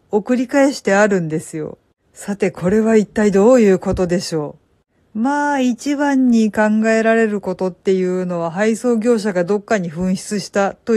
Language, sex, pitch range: Japanese, female, 175-215 Hz